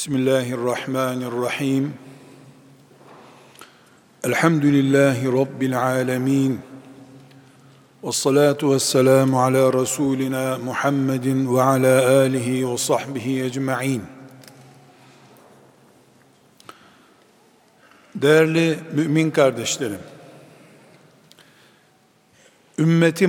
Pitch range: 140-160 Hz